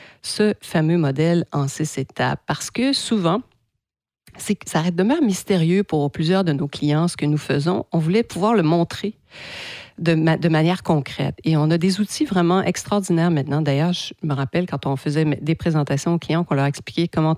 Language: French